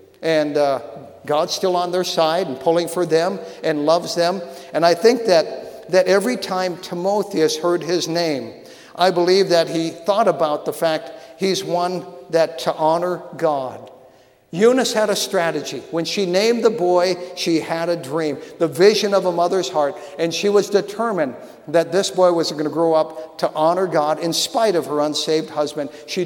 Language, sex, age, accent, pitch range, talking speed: English, male, 50-69, American, 155-195 Hz, 185 wpm